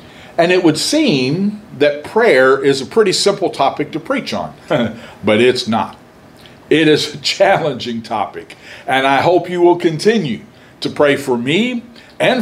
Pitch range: 125-185 Hz